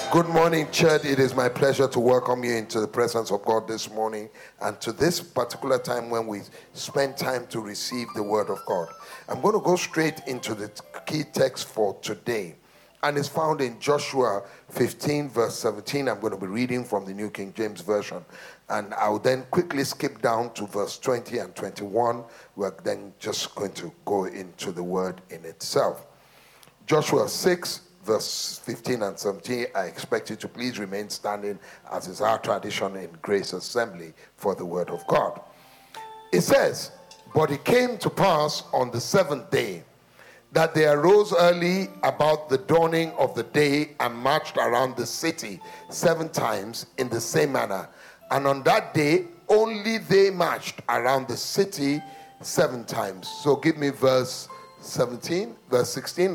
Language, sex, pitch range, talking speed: English, male, 115-160 Hz, 170 wpm